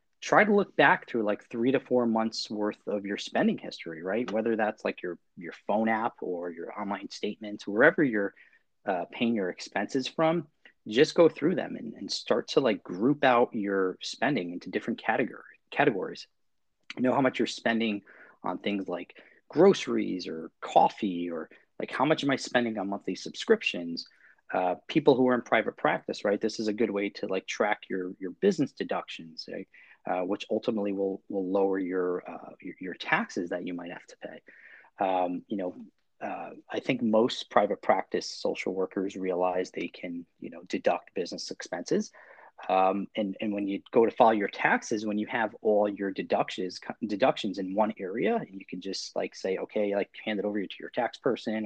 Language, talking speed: English, 190 wpm